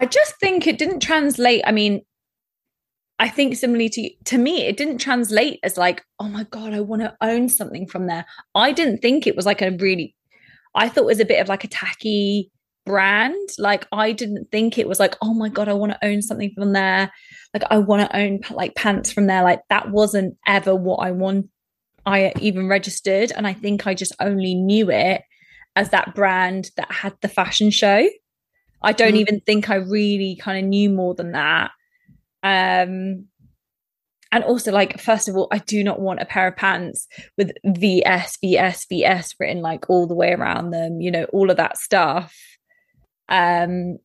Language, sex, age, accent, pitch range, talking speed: English, female, 20-39, British, 190-220 Hz, 200 wpm